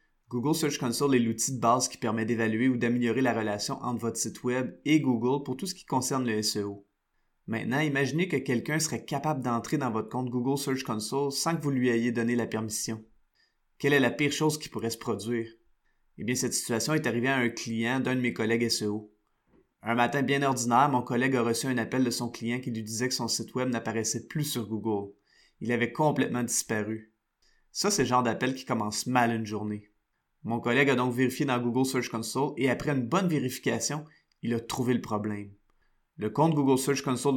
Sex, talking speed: male, 215 wpm